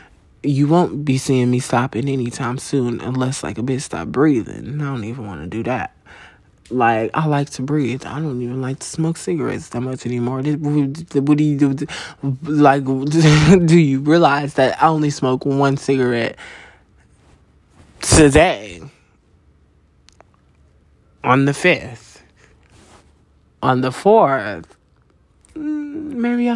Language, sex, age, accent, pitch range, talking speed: English, male, 20-39, American, 125-150 Hz, 130 wpm